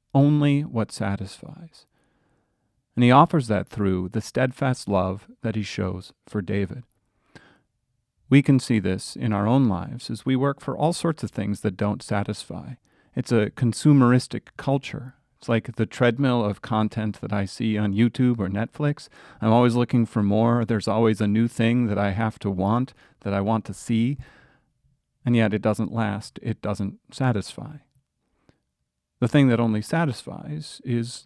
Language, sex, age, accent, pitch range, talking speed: English, male, 40-59, American, 105-125 Hz, 165 wpm